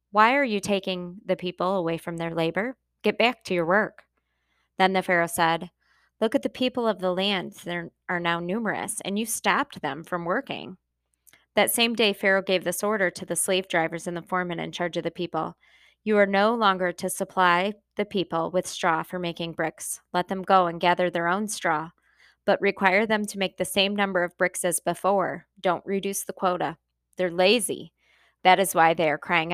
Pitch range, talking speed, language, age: 175-200 Hz, 205 wpm, English, 20-39